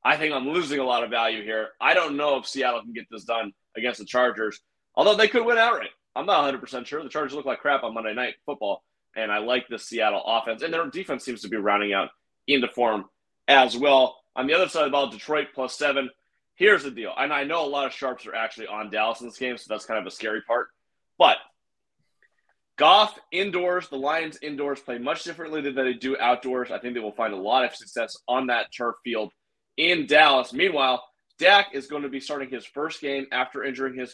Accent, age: American, 30-49